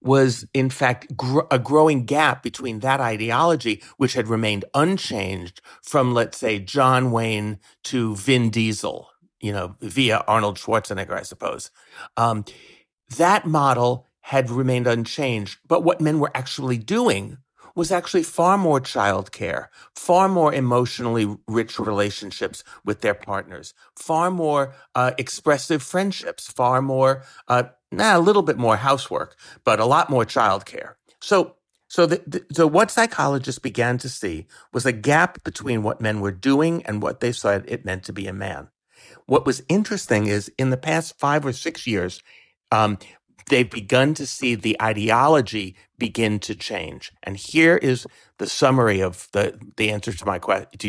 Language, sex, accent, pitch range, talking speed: English, male, American, 110-145 Hz, 160 wpm